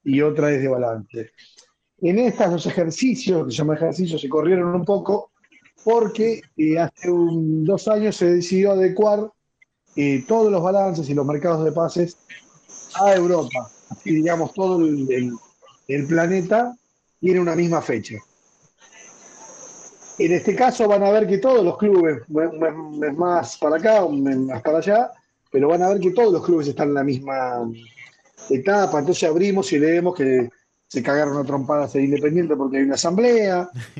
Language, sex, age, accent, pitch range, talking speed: Spanish, male, 30-49, Argentinian, 145-195 Hz, 165 wpm